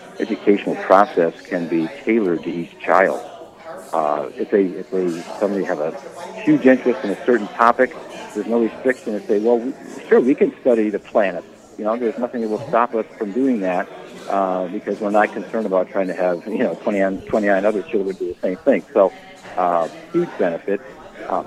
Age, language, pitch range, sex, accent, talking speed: 50-69, English, 95-120 Hz, male, American, 195 wpm